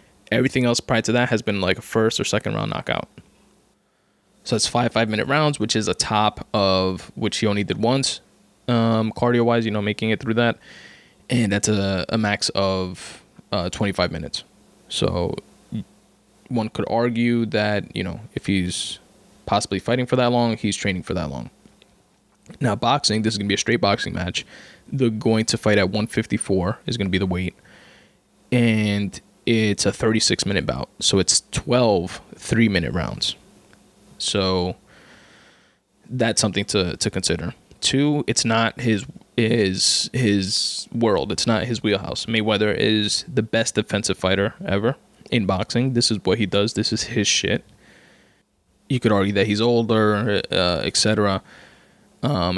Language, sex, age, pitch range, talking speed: English, male, 20-39, 100-115 Hz, 165 wpm